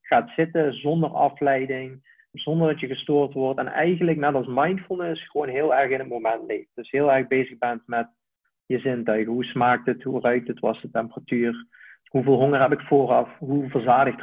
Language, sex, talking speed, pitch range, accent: Dutch, male, 190 wpm, 125-150 Hz, Dutch